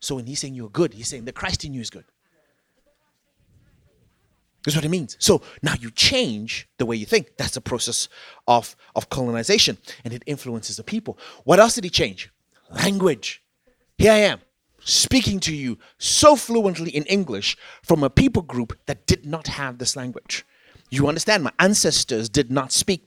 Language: English